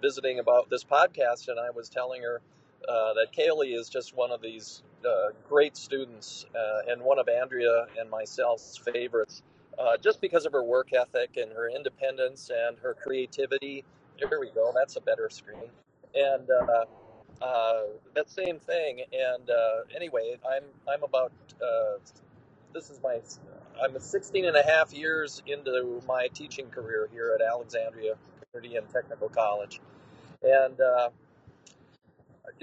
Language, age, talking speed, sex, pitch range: English, 40-59, 150 wpm, male, 120-175 Hz